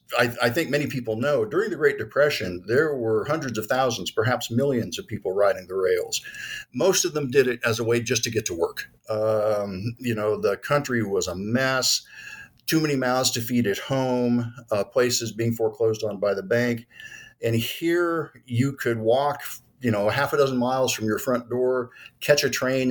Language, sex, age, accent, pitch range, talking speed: English, male, 50-69, American, 115-140 Hz, 200 wpm